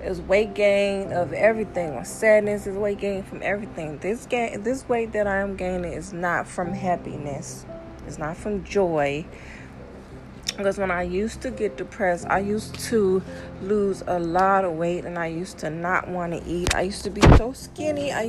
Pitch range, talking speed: 170-205 Hz, 190 wpm